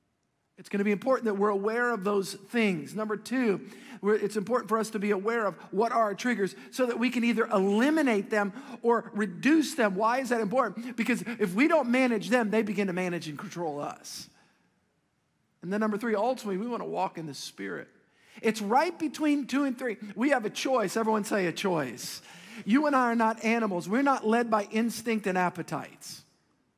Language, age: English, 50-69